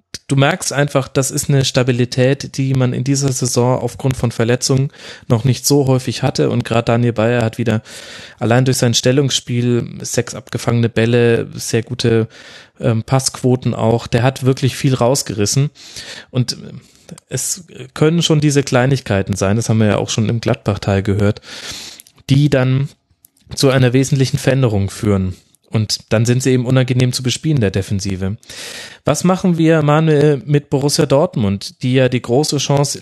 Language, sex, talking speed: German, male, 160 wpm